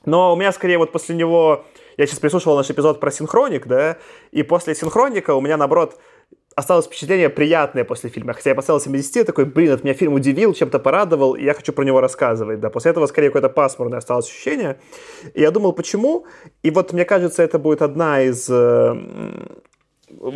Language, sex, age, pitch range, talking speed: Russian, male, 20-39, 140-190 Hz, 190 wpm